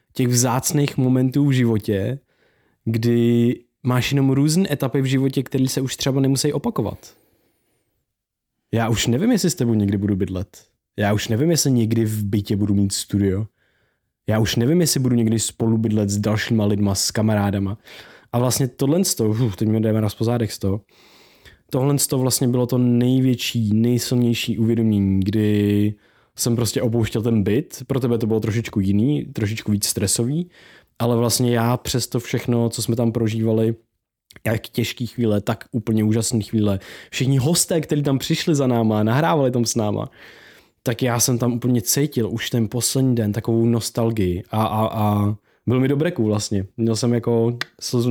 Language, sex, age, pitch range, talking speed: Czech, male, 20-39, 110-130 Hz, 170 wpm